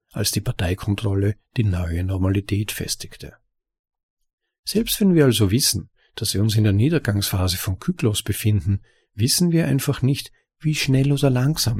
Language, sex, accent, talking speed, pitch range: German, male, German, 145 wpm, 100-130 Hz